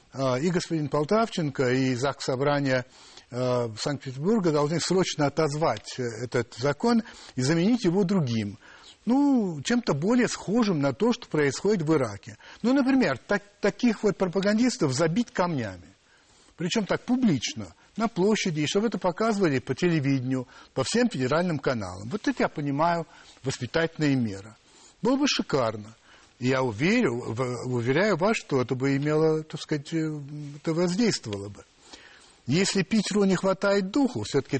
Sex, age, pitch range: male, 60-79, 130-200 Hz